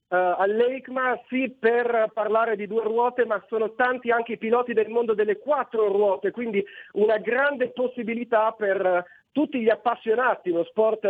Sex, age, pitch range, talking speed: male, 40-59, 200-235 Hz, 150 wpm